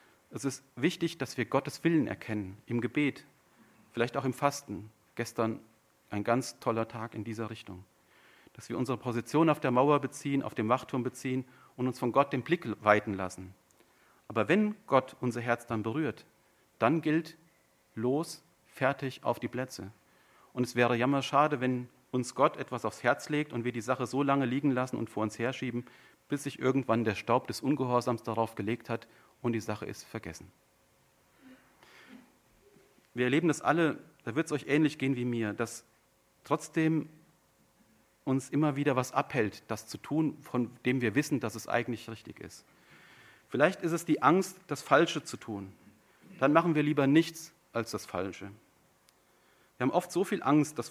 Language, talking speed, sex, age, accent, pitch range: German, 175 wpm, male, 40-59, German, 115-145 Hz